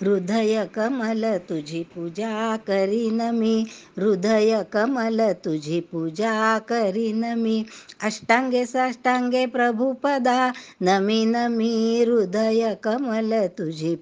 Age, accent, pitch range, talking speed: 60-79, native, 210-240 Hz, 80 wpm